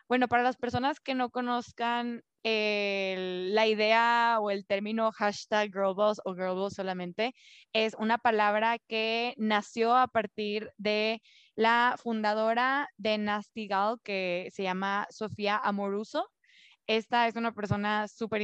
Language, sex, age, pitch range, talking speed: Spanish, female, 20-39, 200-235 Hz, 130 wpm